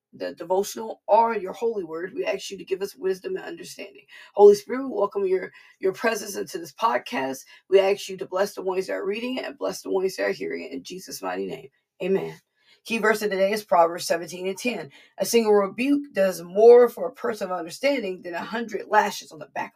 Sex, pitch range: female, 190-245 Hz